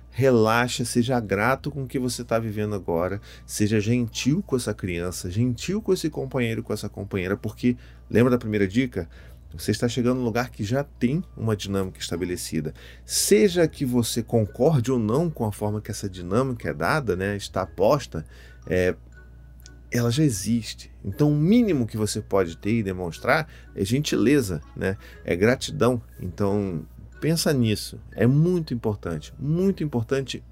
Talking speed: 160 wpm